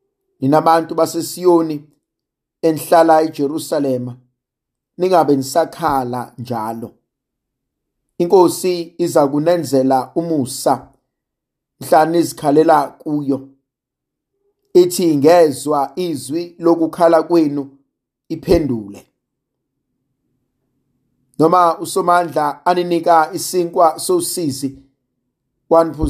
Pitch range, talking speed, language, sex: 145-175 Hz, 55 wpm, English, male